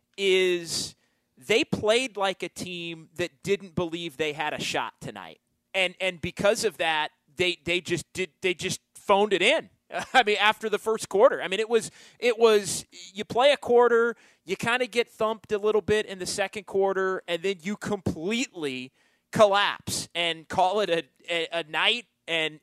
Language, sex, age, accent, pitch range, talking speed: English, male, 30-49, American, 160-210 Hz, 185 wpm